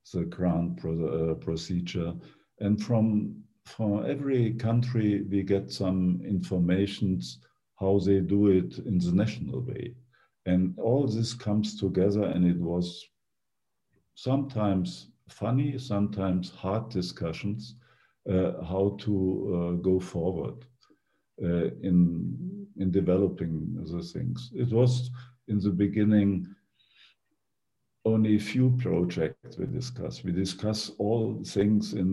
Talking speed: 115 wpm